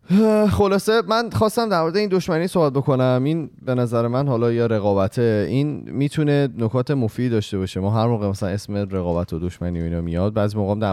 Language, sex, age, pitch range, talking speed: Persian, male, 20-39, 90-110 Hz, 200 wpm